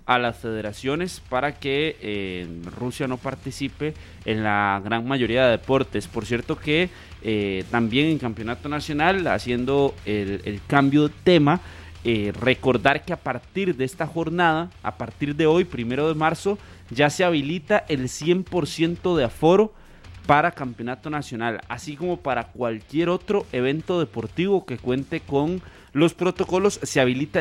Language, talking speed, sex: Spanish, 150 wpm, male